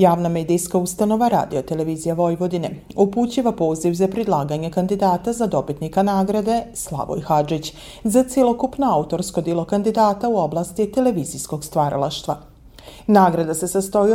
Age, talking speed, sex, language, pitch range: 40-59, 115 wpm, female, Croatian, 165-225 Hz